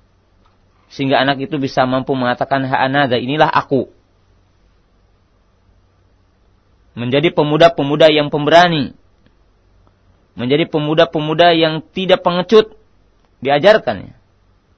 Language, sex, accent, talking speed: Indonesian, male, native, 75 wpm